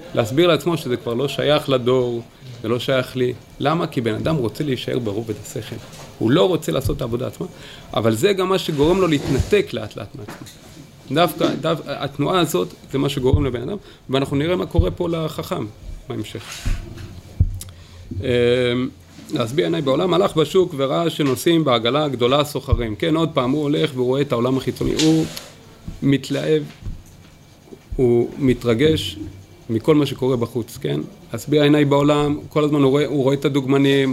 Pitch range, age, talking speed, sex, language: 115-160 Hz, 30-49, 160 wpm, male, Hebrew